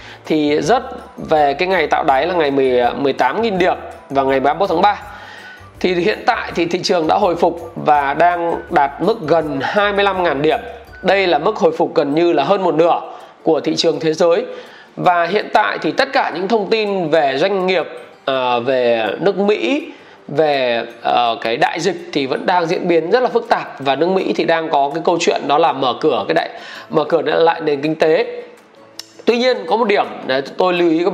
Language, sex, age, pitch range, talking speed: Vietnamese, male, 20-39, 155-205 Hz, 205 wpm